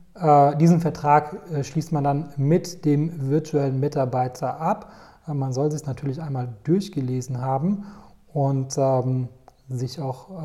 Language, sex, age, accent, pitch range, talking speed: German, male, 30-49, German, 135-160 Hz, 140 wpm